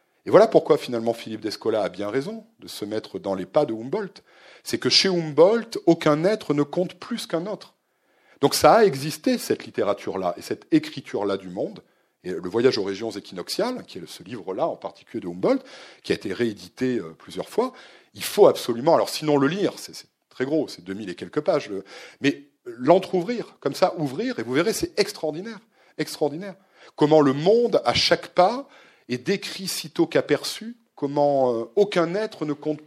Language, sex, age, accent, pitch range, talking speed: French, male, 40-59, French, 120-180 Hz, 185 wpm